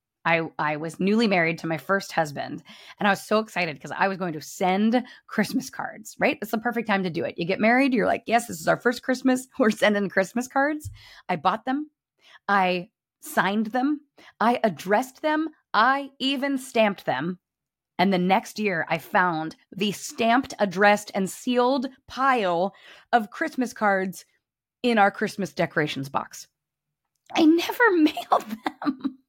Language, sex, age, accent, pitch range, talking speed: English, female, 30-49, American, 175-255 Hz, 170 wpm